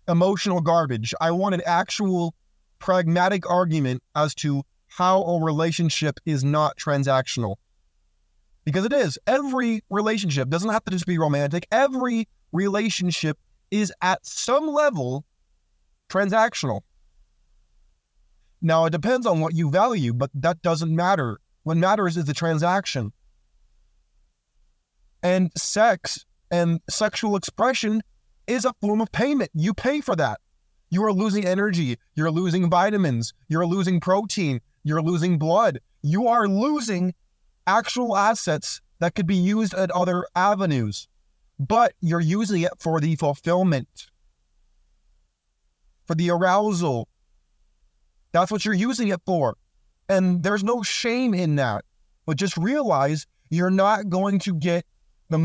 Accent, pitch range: American, 145-200 Hz